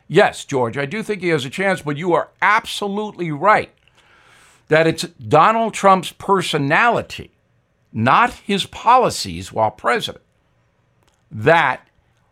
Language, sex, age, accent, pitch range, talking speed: English, male, 50-69, American, 130-180 Hz, 120 wpm